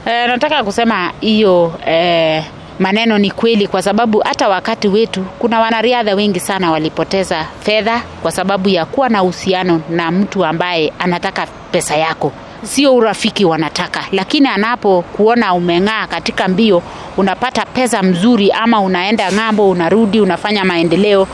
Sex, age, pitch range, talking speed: female, 30-49, 180-235 Hz, 135 wpm